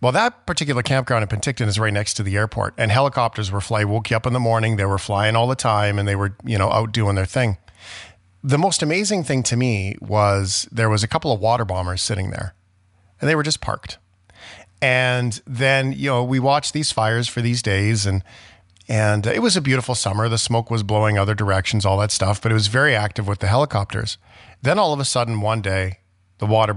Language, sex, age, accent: English, male, 40-59, American